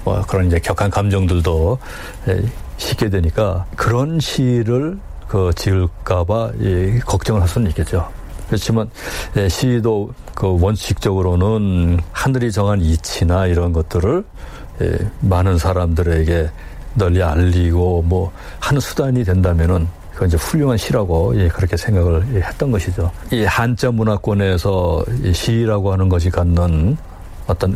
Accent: native